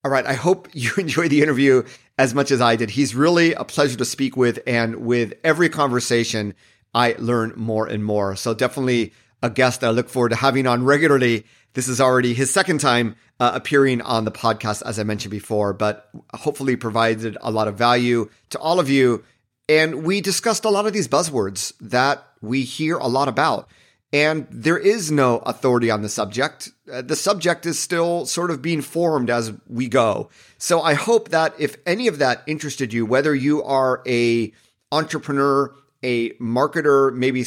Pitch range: 115-150 Hz